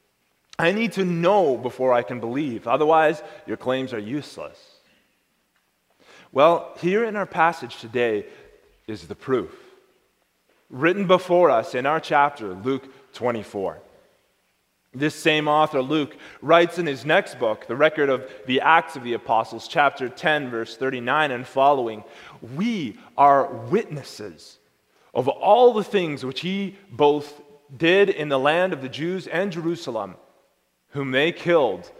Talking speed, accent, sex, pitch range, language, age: 140 wpm, American, male, 145-200 Hz, English, 30-49